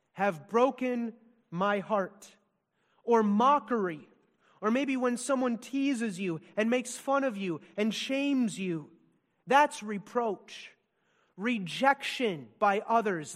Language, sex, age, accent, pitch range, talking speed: English, male, 30-49, American, 180-235 Hz, 110 wpm